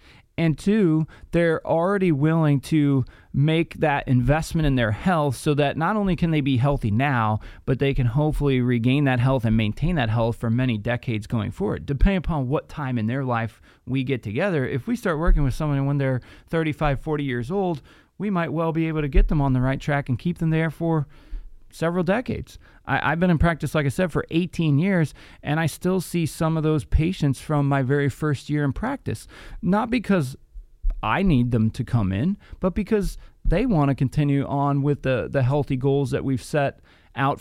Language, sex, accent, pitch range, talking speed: English, male, American, 130-165 Hz, 205 wpm